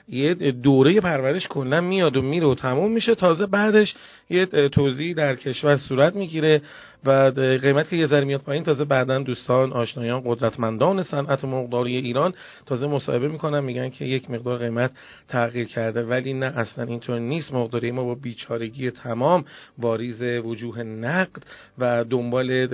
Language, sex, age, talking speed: Persian, male, 40-59, 155 wpm